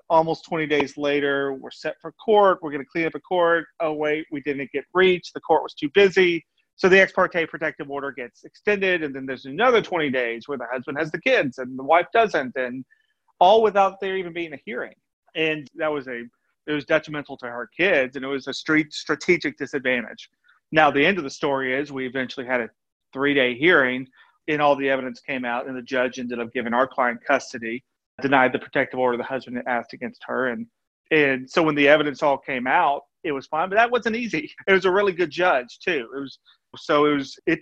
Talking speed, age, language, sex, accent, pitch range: 225 wpm, 40-59, English, male, American, 130-165 Hz